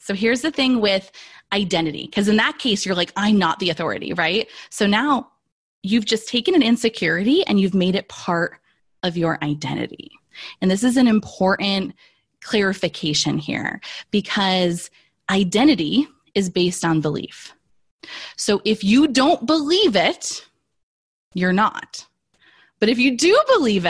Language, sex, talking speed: English, female, 145 wpm